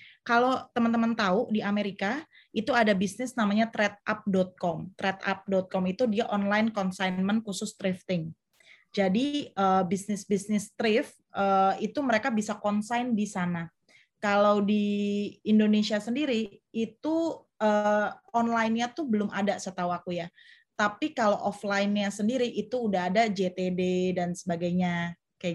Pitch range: 195-230 Hz